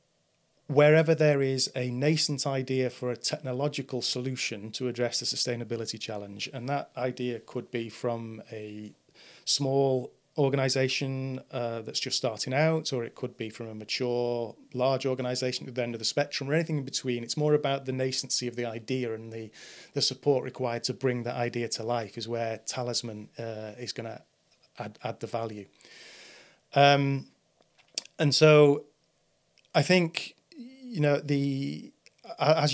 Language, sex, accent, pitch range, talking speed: English, male, British, 120-140 Hz, 160 wpm